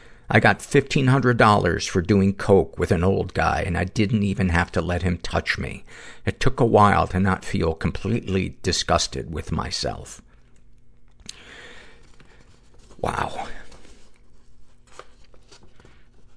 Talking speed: 115 wpm